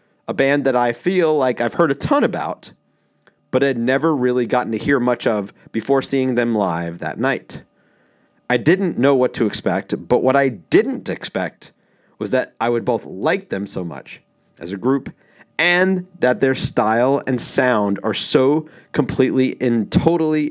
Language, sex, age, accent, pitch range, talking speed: English, male, 30-49, American, 110-145 Hz, 175 wpm